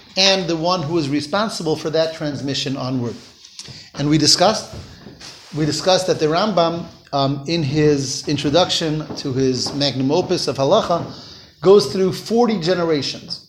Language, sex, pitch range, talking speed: English, male, 140-185 Hz, 140 wpm